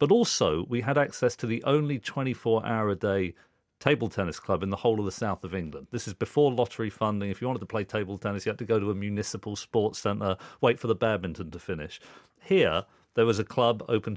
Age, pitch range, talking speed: 40-59, 105-140 Hz, 225 wpm